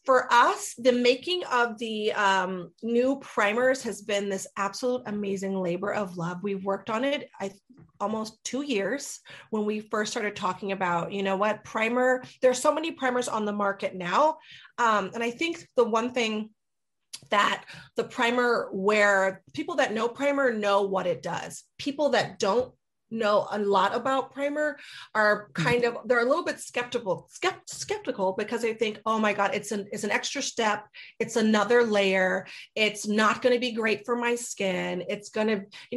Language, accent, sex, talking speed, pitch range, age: English, American, female, 175 wpm, 200-250 Hz, 30-49